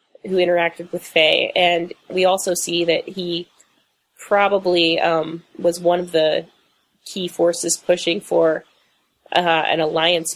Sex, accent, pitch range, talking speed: female, American, 165-180 Hz, 135 wpm